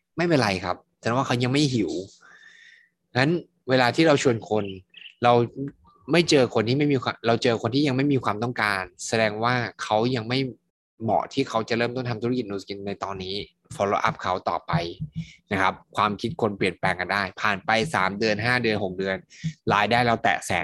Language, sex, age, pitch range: Thai, male, 20-39, 105-130 Hz